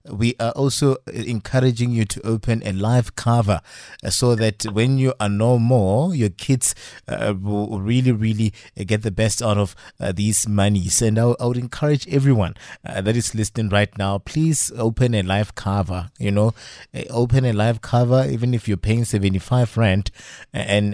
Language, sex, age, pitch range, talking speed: English, male, 20-39, 100-120 Hz, 170 wpm